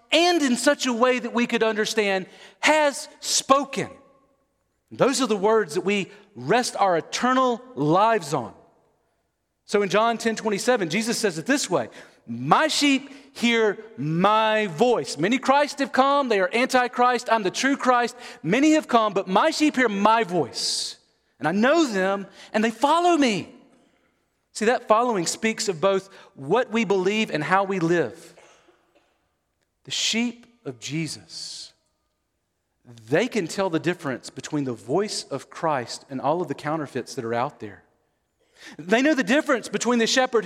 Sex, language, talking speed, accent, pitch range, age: male, English, 160 wpm, American, 165-245 Hz, 40-59